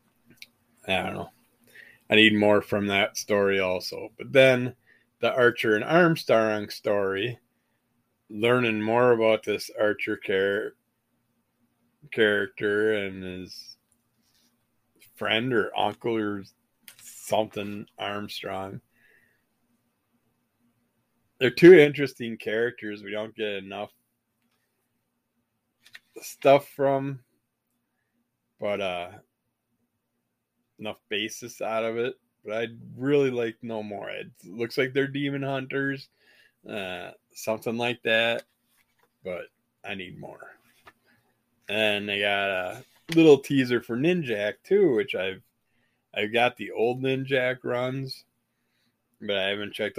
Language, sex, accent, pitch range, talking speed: English, male, American, 105-125 Hz, 105 wpm